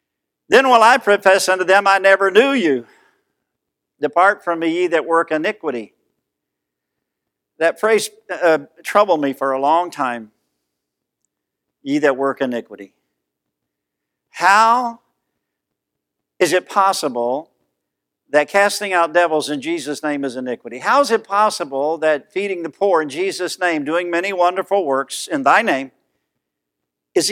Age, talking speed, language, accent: 50-69, 135 wpm, English, American